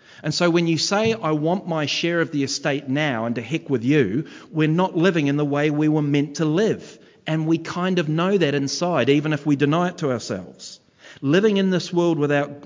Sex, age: male, 40-59